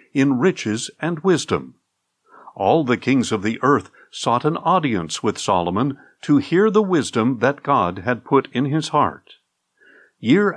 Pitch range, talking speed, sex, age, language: 120-175 Hz, 155 wpm, male, 50-69, English